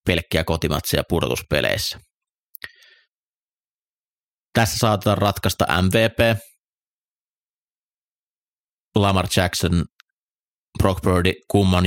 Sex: male